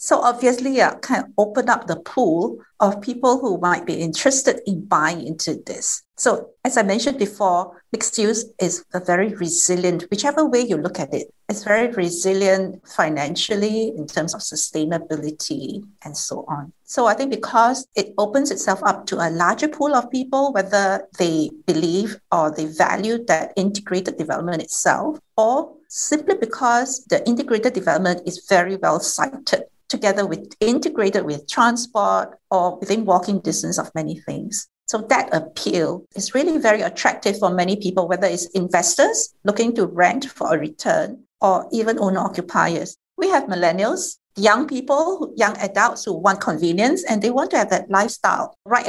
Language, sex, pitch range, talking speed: English, female, 180-255 Hz, 165 wpm